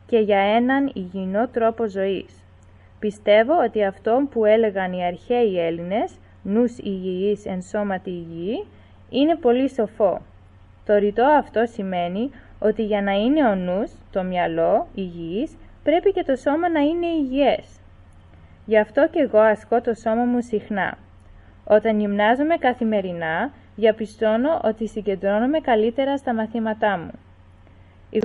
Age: 20-39